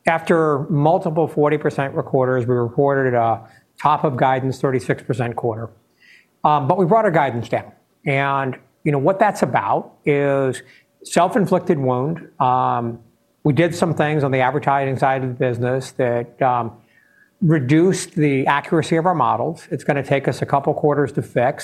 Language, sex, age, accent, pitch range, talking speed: English, male, 50-69, American, 130-160 Hz, 160 wpm